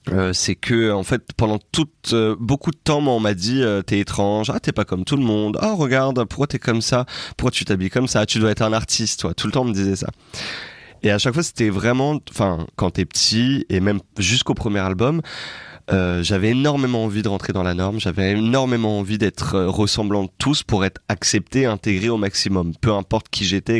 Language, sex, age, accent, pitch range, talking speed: French, male, 30-49, French, 95-120 Hz, 230 wpm